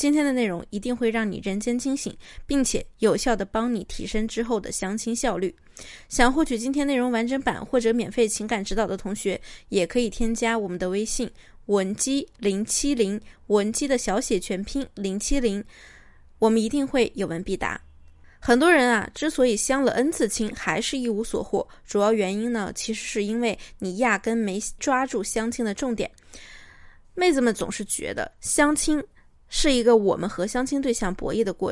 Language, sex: Chinese, female